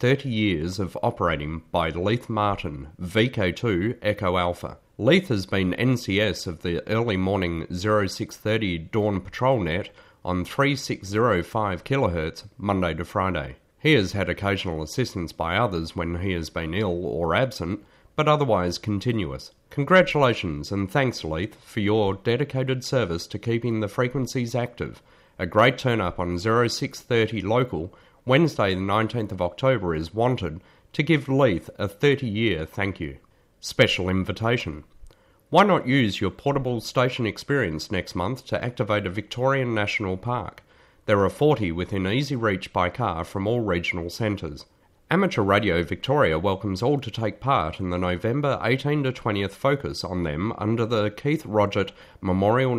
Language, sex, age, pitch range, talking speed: English, male, 30-49, 90-125 Hz, 150 wpm